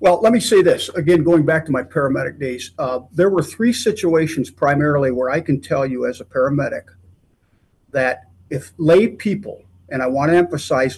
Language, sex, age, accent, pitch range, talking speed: English, male, 50-69, American, 130-170 Hz, 190 wpm